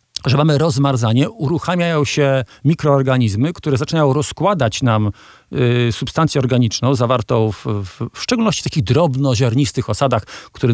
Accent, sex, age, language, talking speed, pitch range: native, male, 50-69, Polish, 115 wpm, 120-160 Hz